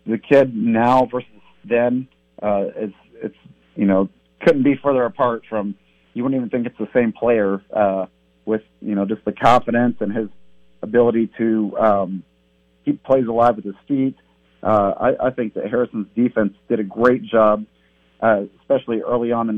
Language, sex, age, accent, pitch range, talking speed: English, male, 50-69, American, 100-115 Hz, 175 wpm